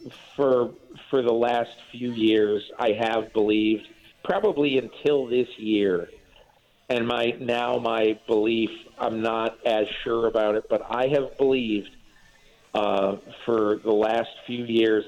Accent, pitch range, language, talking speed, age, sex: American, 110-130 Hz, English, 135 wpm, 50-69, male